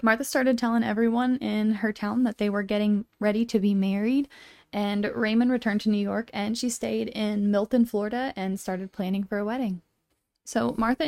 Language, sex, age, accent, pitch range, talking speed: English, female, 10-29, American, 205-240 Hz, 190 wpm